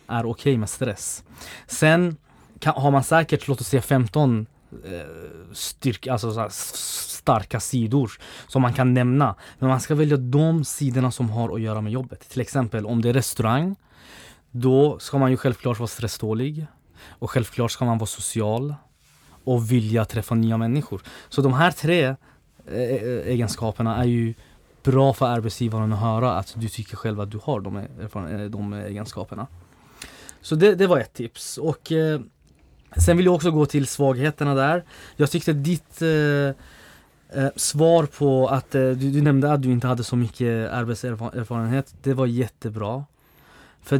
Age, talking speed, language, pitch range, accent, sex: 20-39, 150 wpm, Swedish, 115-140 Hz, native, male